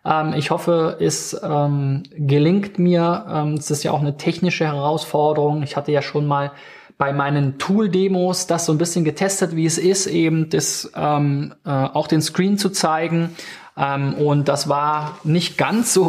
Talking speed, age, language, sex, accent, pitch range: 155 wpm, 20-39, German, male, German, 140-175 Hz